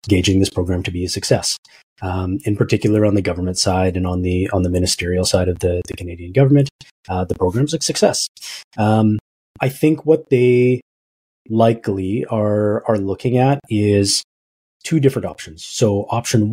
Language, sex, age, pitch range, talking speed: English, male, 30-49, 95-115 Hz, 170 wpm